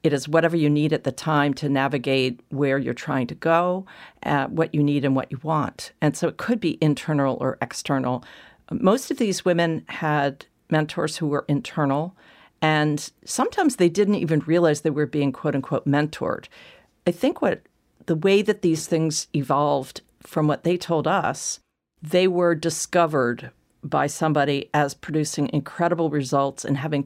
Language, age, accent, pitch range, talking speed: English, 50-69, American, 140-170 Hz, 170 wpm